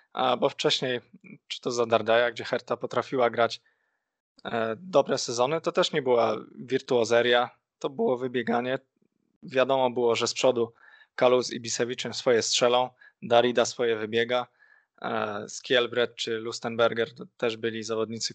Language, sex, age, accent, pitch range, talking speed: Polish, male, 20-39, native, 115-130 Hz, 135 wpm